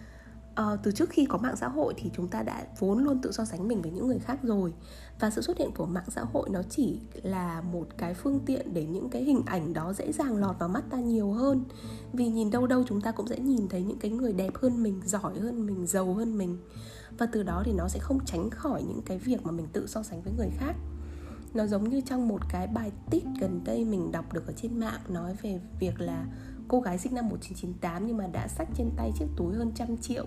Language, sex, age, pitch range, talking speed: Vietnamese, female, 10-29, 175-250 Hz, 255 wpm